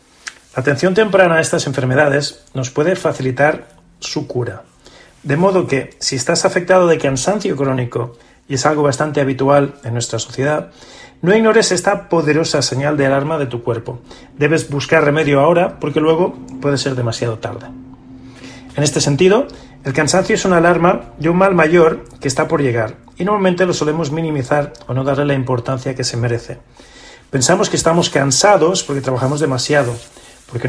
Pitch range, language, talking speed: 130-175 Hz, Spanish, 165 wpm